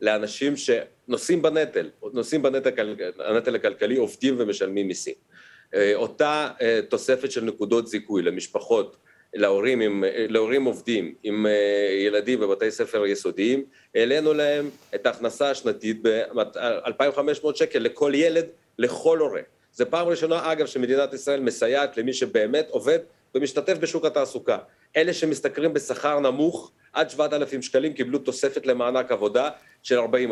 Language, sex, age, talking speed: Hebrew, male, 40-59, 125 wpm